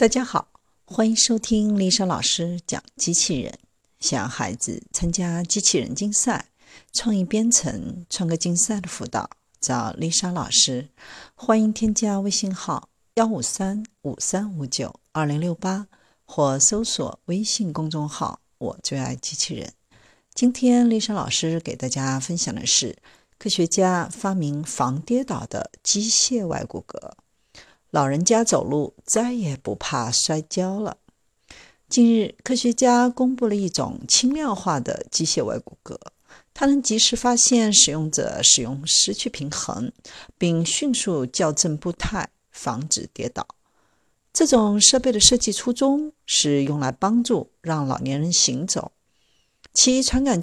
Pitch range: 155-225 Hz